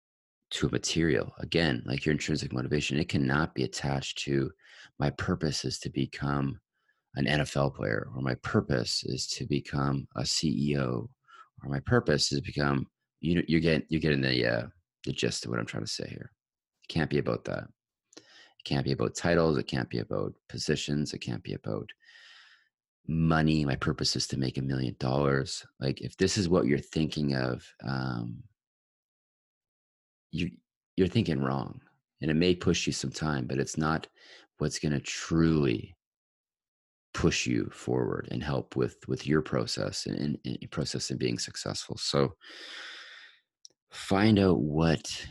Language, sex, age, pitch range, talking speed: English, male, 30-49, 65-80 Hz, 170 wpm